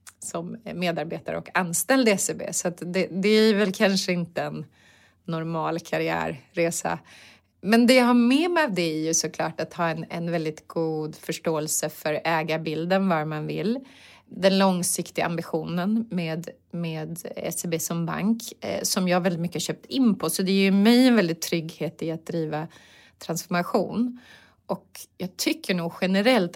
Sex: female